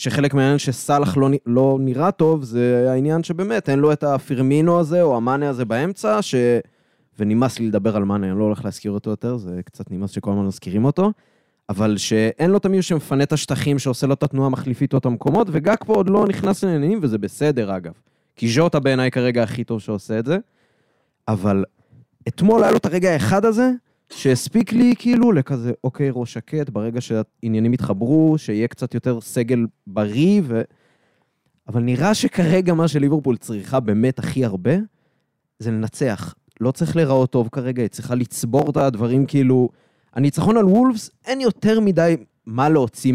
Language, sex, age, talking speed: Hebrew, male, 20-39, 175 wpm